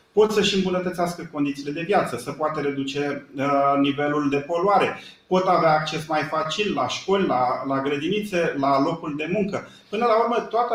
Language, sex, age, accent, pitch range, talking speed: Romanian, male, 40-59, native, 145-195 Hz, 175 wpm